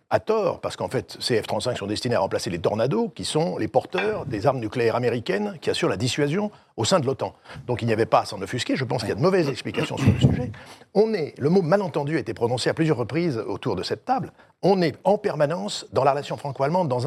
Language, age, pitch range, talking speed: French, 50-69, 125-170 Hz, 260 wpm